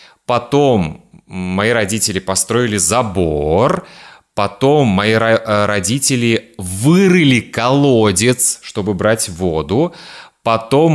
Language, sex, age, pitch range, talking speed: Russian, male, 30-49, 105-145 Hz, 75 wpm